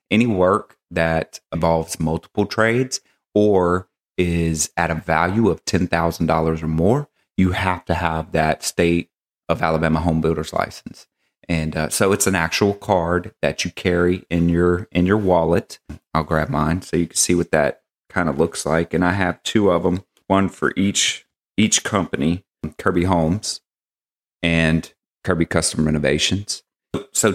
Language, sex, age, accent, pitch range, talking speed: English, male, 30-49, American, 80-95 Hz, 160 wpm